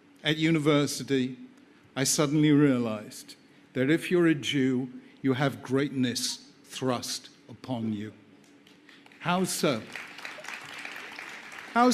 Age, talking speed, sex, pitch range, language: 60-79, 95 wpm, male, 165-215 Hz, Hebrew